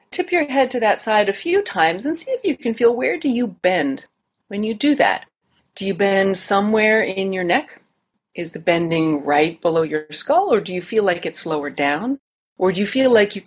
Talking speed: 225 wpm